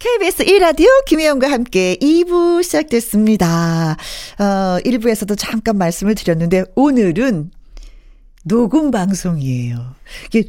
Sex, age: female, 40-59